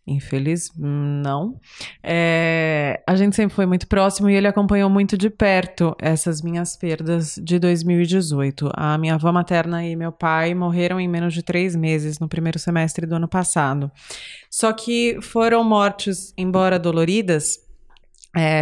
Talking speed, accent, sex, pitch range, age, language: 150 wpm, Brazilian, female, 165-210 Hz, 20-39, Portuguese